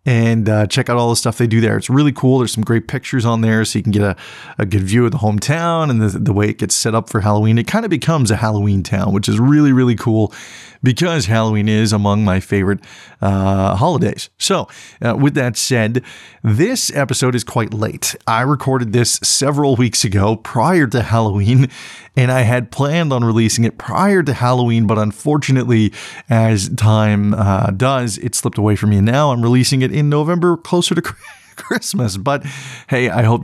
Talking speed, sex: 205 wpm, male